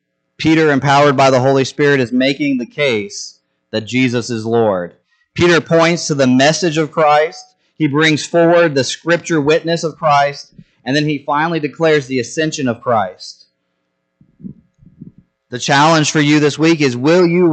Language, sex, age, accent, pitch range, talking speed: English, male, 30-49, American, 90-150 Hz, 160 wpm